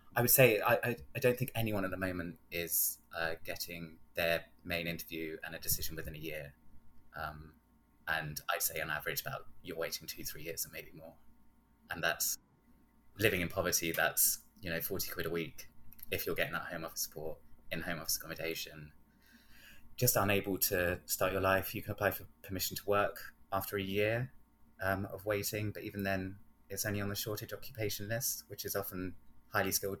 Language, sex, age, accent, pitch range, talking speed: English, male, 20-39, British, 85-105 Hz, 190 wpm